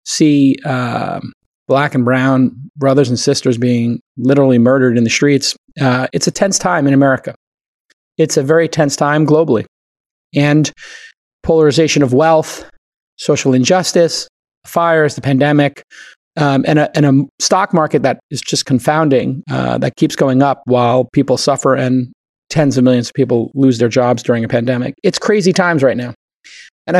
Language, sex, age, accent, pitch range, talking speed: English, male, 30-49, American, 130-160 Hz, 160 wpm